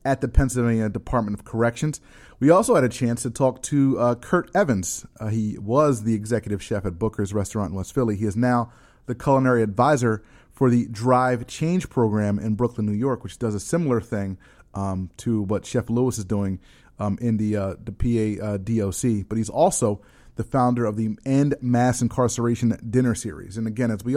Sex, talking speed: male, 195 wpm